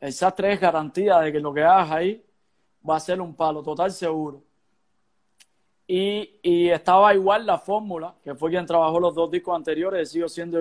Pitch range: 160-185 Hz